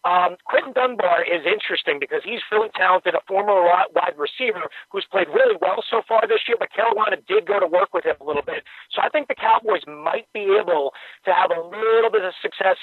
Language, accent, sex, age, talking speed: English, American, male, 40-59, 220 wpm